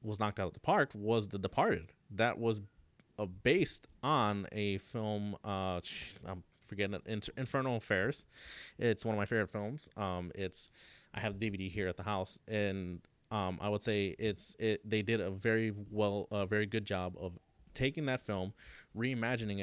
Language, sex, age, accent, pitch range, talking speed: English, male, 30-49, American, 95-105 Hz, 180 wpm